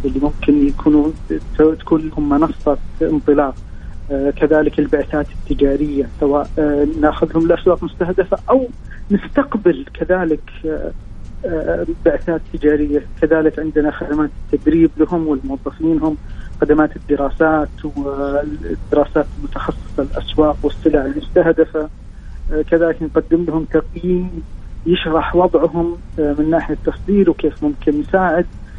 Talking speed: 105 wpm